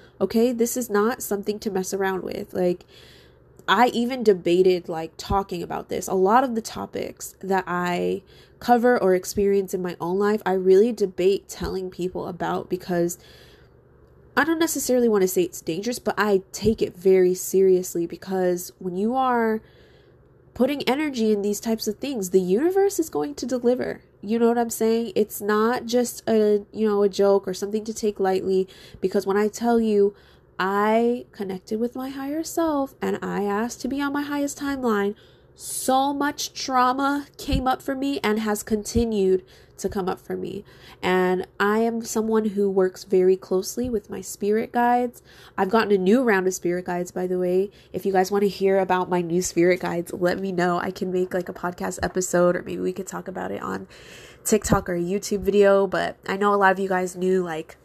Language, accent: English, American